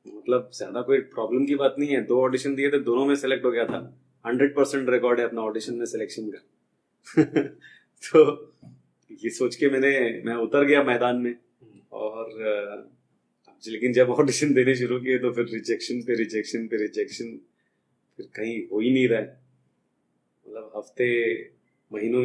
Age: 30-49